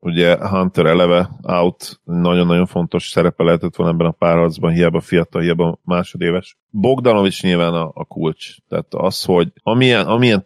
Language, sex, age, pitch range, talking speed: Hungarian, male, 30-49, 80-95 Hz, 150 wpm